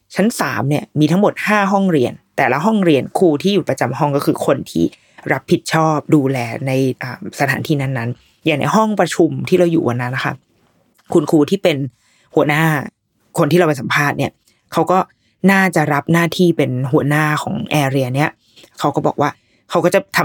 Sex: female